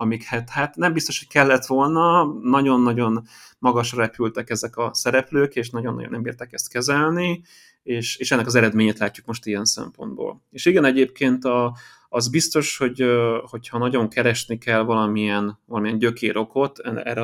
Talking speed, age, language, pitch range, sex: 150 wpm, 30-49, Hungarian, 110-130 Hz, male